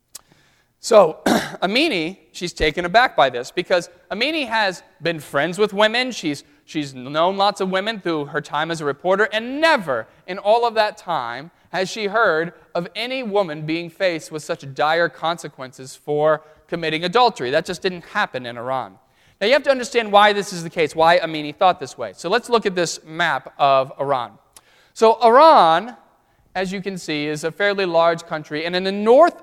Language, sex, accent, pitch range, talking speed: English, male, American, 155-200 Hz, 190 wpm